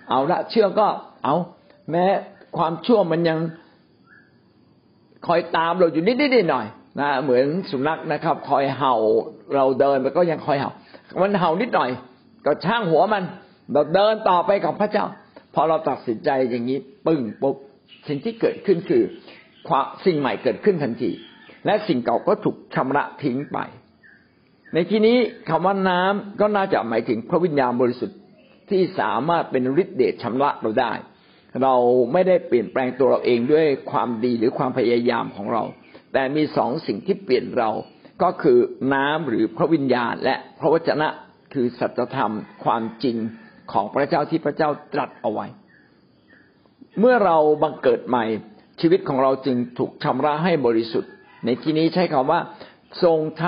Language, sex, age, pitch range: Thai, male, 60-79, 135-200 Hz